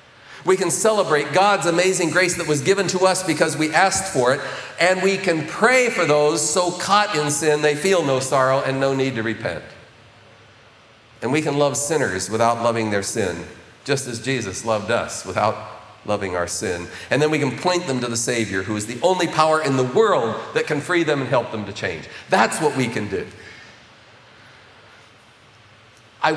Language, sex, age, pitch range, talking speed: English, male, 40-59, 115-155 Hz, 195 wpm